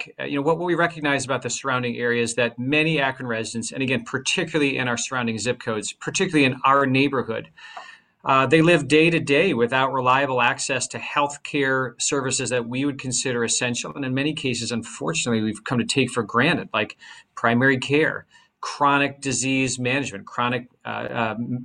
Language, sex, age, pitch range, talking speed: English, male, 40-59, 120-145 Hz, 175 wpm